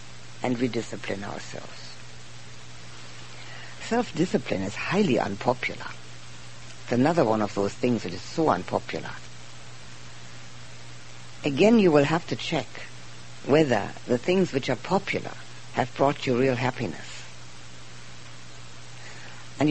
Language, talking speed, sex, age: English, 110 wpm, female, 60-79